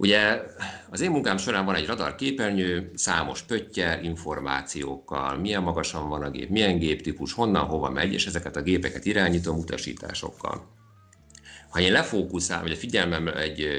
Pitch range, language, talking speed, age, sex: 75-100 Hz, Hungarian, 150 wpm, 50-69, male